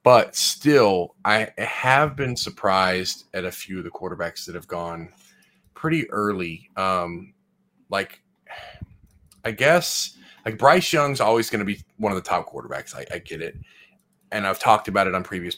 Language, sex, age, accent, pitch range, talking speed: English, male, 30-49, American, 95-115 Hz, 170 wpm